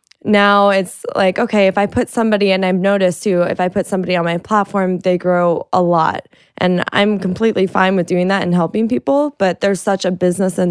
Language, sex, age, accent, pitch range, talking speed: English, female, 20-39, American, 165-185 Hz, 220 wpm